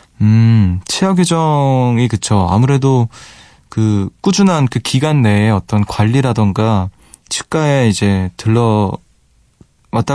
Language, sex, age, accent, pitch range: Korean, male, 20-39, native, 105-140 Hz